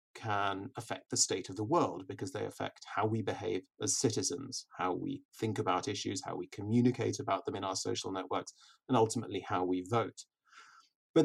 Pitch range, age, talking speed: 110-140 Hz, 30-49, 185 wpm